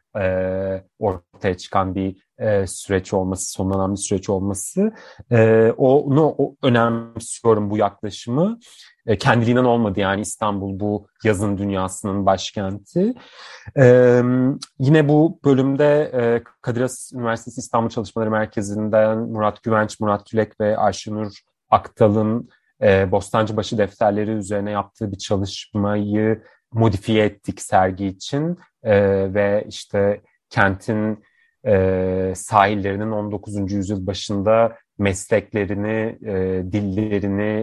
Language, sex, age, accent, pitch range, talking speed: Turkish, male, 30-49, native, 100-120 Hz, 90 wpm